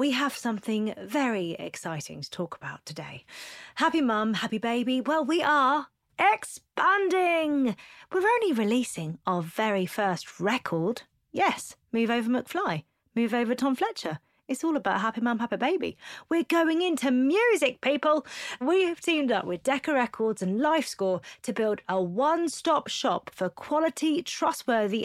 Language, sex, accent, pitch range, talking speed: English, female, British, 185-265 Hz, 145 wpm